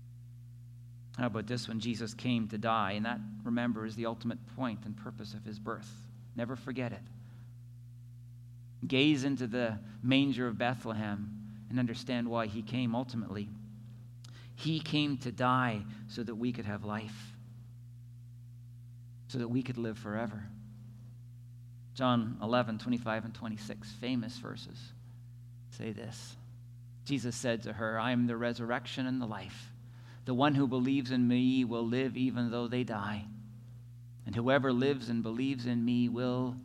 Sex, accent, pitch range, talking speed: male, American, 115-125 Hz, 150 wpm